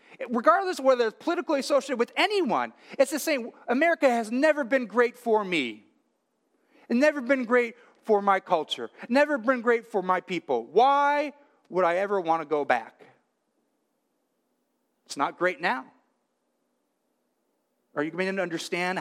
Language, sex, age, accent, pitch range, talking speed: English, male, 40-59, American, 185-275 Hz, 150 wpm